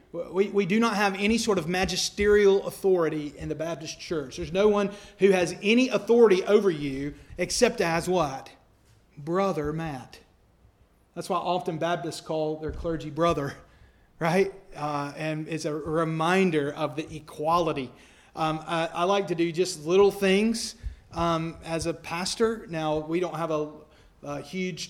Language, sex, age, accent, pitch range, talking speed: English, male, 30-49, American, 150-185 Hz, 155 wpm